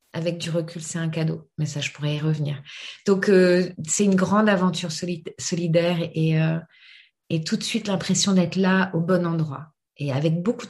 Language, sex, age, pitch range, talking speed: French, female, 30-49, 160-190 Hz, 195 wpm